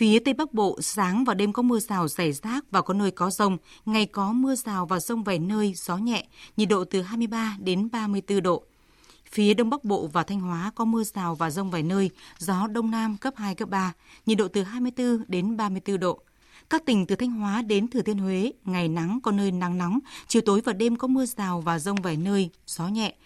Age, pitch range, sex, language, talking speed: 20-39, 185-230 Hz, female, Vietnamese, 230 wpm